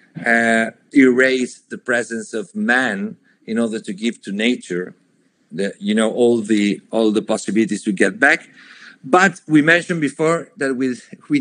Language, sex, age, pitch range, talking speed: English, male, 50-69, 115-155 Hz, 160 wpm